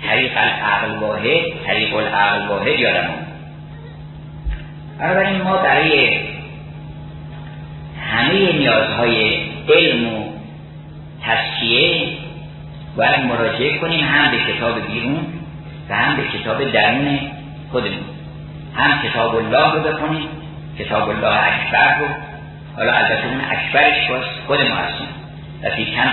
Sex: male